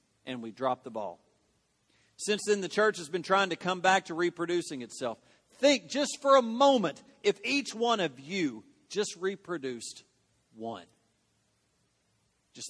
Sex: male